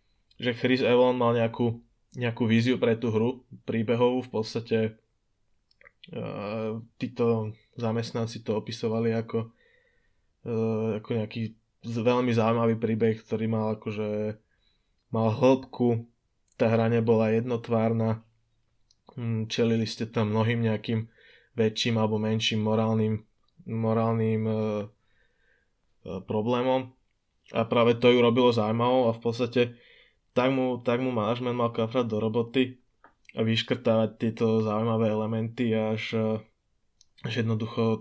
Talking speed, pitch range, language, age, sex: 110 wpm, 110-120 Hz, Slovak, 20-39, male